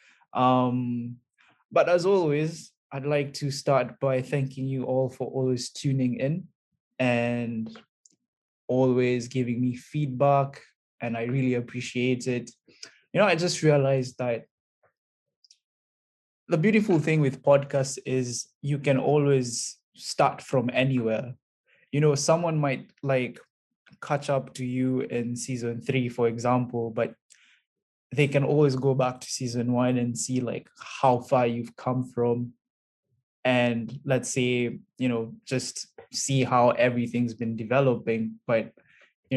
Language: English